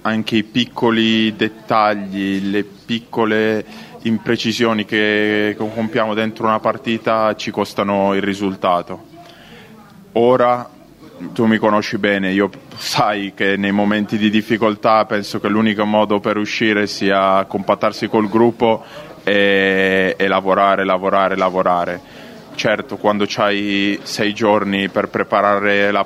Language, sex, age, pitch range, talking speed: Italian, male, 20-39, 100-110 Hz, 115 wpm